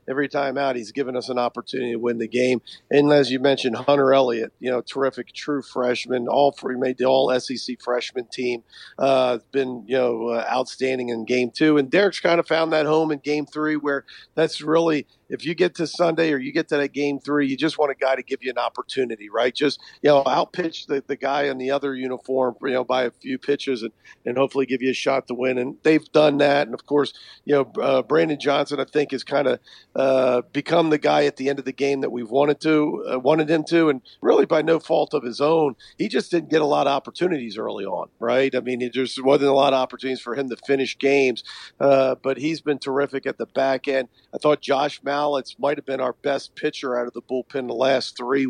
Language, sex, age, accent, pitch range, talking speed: English, male, 50-69, American, 130-145 Hz, 240 wpm